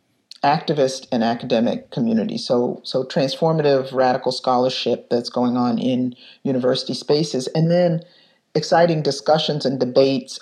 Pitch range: 125-160 Hz